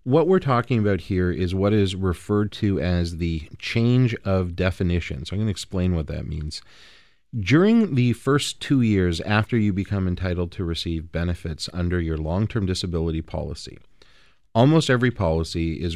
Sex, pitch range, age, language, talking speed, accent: male, 85-115 Hz, 40-59, English, 165 wpm, American